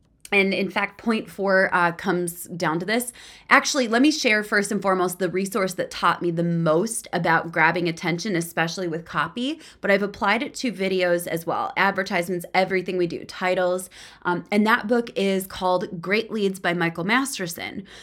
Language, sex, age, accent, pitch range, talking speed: English, female, 20-39, American, 175-220 Hz, 180 wpm